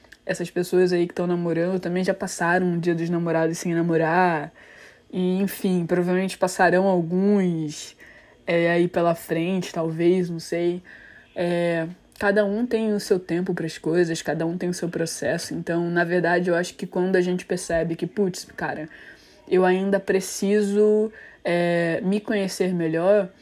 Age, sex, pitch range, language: 20-39, female, 170-195 Hz, Portuguese